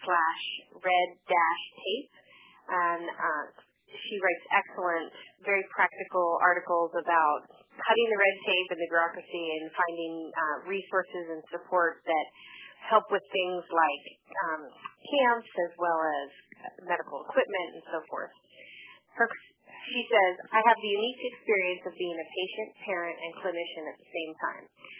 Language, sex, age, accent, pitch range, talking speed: English, female, 30-49, American, 165-200 Hz, 140 wpm